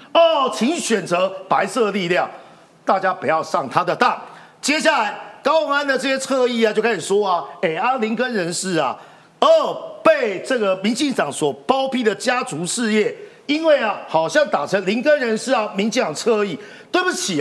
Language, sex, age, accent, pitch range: Chinese, male, 50-69, native, 205-300 Hz